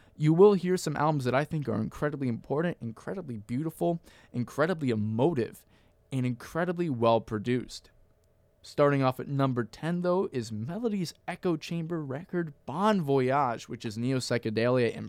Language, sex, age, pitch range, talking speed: English, male, 20-39, 115-150 Hz, 145 wpm